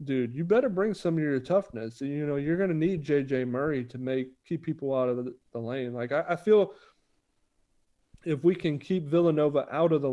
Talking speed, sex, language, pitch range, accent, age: 220 wpm, male, English, 130-155 Hz, American, 40-59